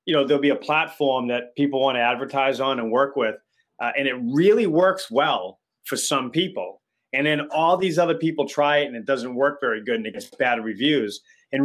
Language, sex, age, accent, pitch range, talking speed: English, male, 30-49, American, 125-160 Hz, 225 wpm